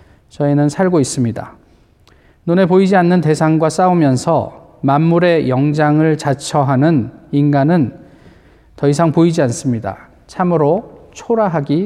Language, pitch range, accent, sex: Korean, 135-180 Hz, native, male